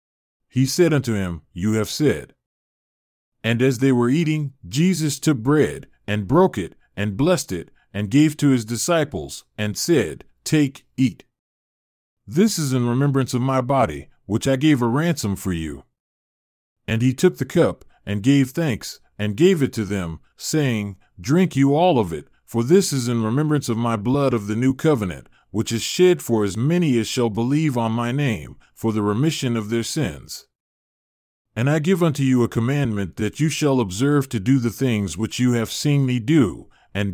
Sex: male